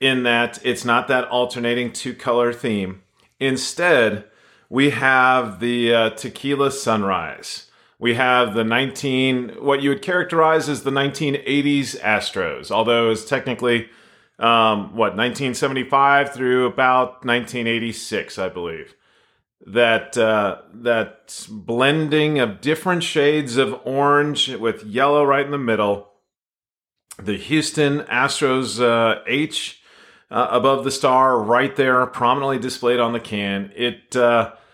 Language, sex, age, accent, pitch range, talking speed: English, male, 40-59, American, 115-140 Hz, 125 wpm